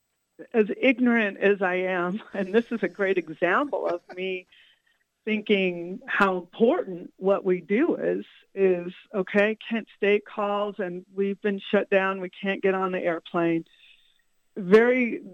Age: 50-69